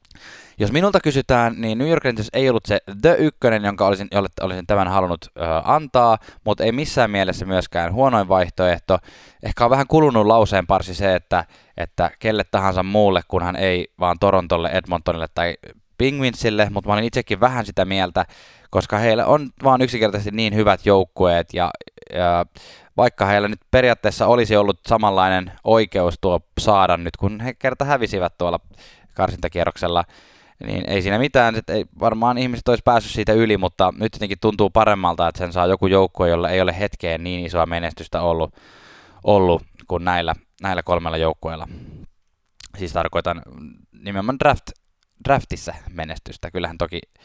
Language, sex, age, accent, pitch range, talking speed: Finnish, male, 20-39, native, 90-115 Hz, 155 wpm